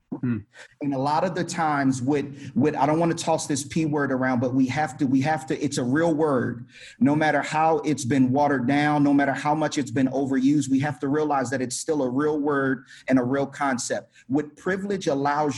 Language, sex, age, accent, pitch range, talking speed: English, male, 30-49, American, 125-155 Hz, 225 wpm